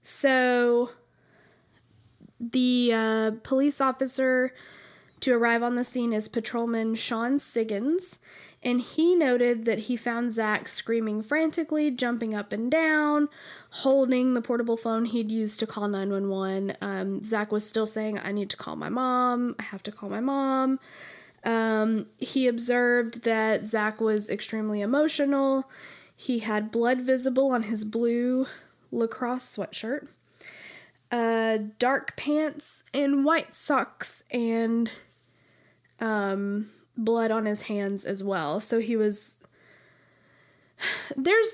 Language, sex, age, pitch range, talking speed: English, female, 10-29, 215-260 Hz, 125 wpm